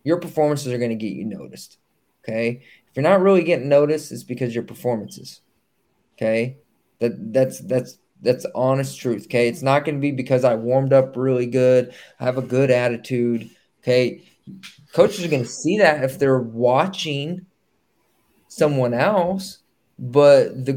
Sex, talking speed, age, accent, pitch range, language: male, 170 wpm, 20-39, American, 125-150 Hz, English